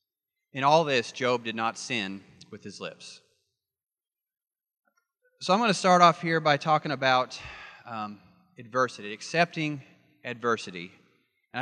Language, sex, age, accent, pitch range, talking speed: English, male, 30-49, American, 140-180 Hz, 130 wpm